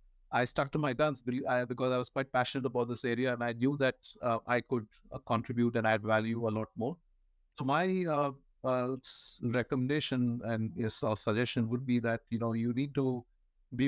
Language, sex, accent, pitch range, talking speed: English, male, Indian, 110-125 Hz, 195 wpm